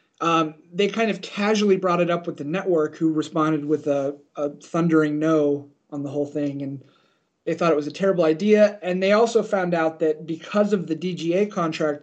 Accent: American